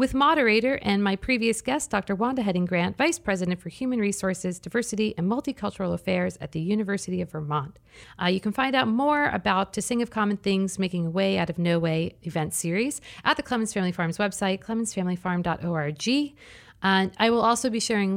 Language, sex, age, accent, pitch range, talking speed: English, female, 40-59, American, 180-235 Hz, 190 wpm